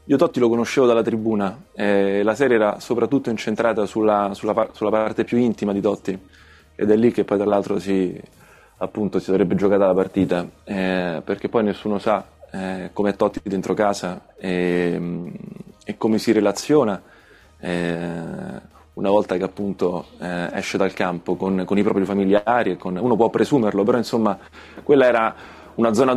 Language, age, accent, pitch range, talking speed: Italian, 20-39, native, 95-115 Hz, 165 wpm